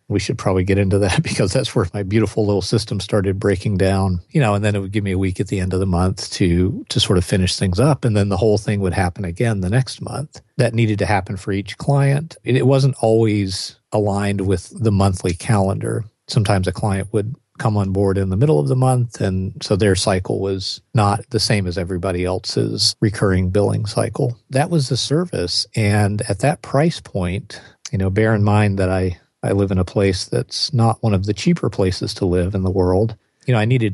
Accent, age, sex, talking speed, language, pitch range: American, 50-69, male, 230 wpm, English, 95-115 Hz